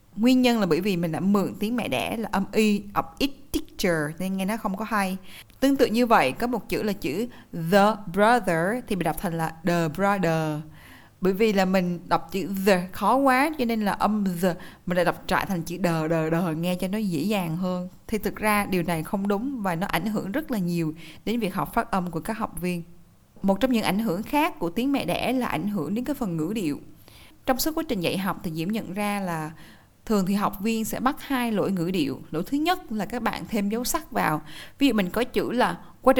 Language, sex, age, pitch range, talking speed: Vietnamese, female, 20-39, 175-235 Hz, 245 wpm